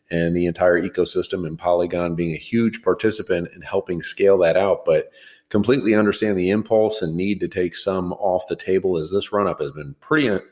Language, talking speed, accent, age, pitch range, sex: English, 200 wpm, American, 40-59, 85-100 Hz, male